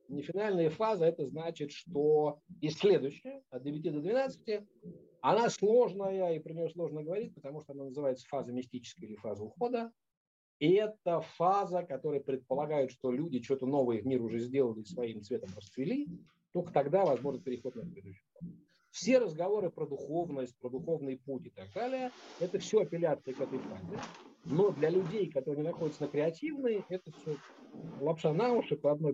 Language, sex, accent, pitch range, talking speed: Russian, male, native, 130-175 Hz, 165 wpm